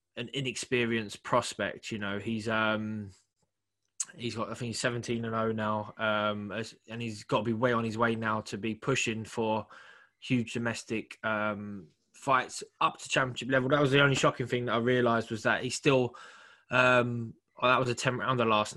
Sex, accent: male, British